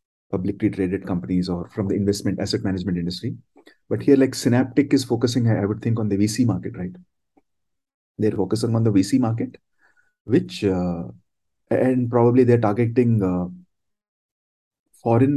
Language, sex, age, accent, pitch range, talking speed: English, male, 30-49, Indian, 95-120 Hz, 150 wpm